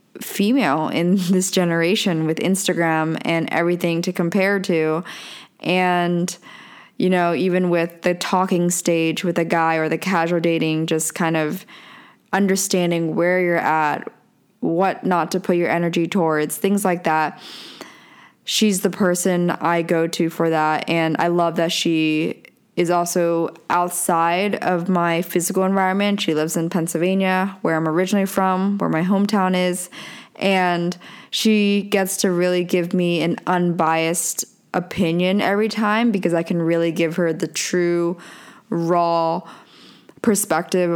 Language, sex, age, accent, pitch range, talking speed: English, female, 10-29, American, 165-190 Hz, 140 wpm